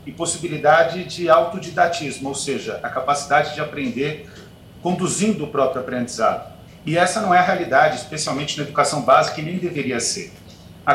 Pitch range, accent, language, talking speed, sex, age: 135-175 Hz, Brazilian, Portuguese, 160 wpm, male, 40-59